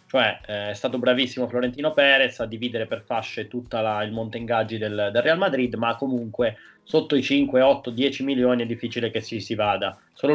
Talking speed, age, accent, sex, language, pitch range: 205 wpm, 20-39, native, male, Italian, 110-135 Hz